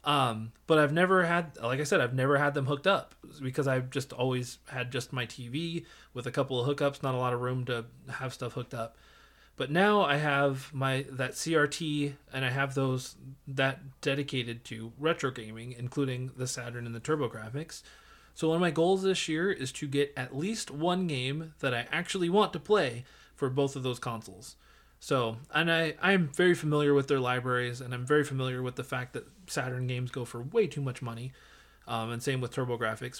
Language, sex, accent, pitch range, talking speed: English, male, American, 125-165 Hz, 205 wpm